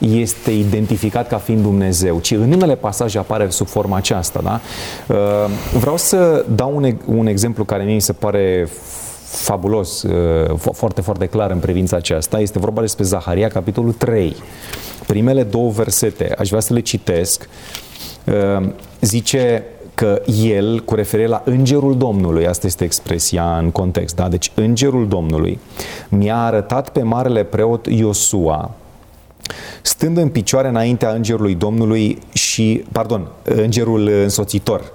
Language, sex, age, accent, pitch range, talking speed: Romanian, male, 30-49, native, 100-120 Hz, 130 wpm